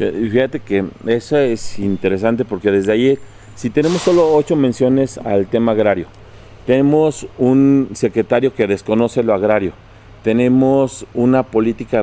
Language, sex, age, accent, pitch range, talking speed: Spanish, male, 40-59, Mexican, 105-125 Hz, 130 wpm